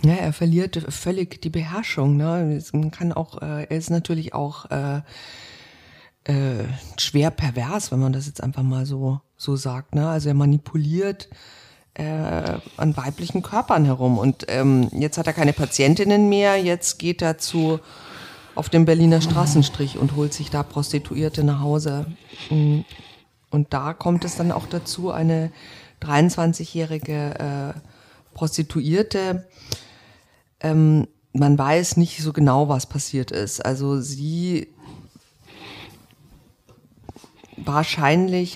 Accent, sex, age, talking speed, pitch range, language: German, female, 50-69, 130 wpm, 140-170 Hz, German